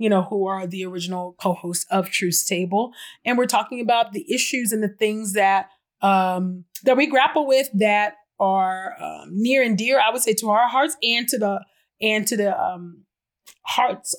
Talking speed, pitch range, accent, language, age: 190 wpm, 190-260 Hz, American, English, 30-49